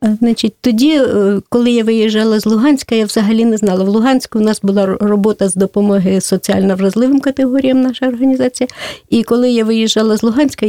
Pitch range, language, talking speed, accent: 205-235 Hz, Russian, 170 wpm, native